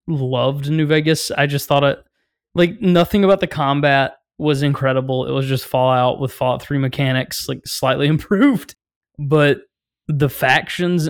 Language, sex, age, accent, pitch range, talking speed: English, male, 20-39, American, 130-155 Hz, 150 wpm